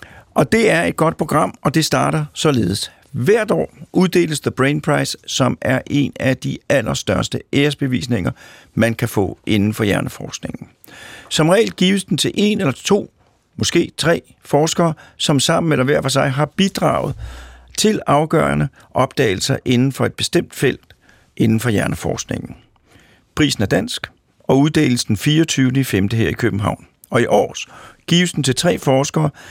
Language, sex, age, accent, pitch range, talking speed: Danish, male, 50-69, native, 115-150 Hz, 160 wpm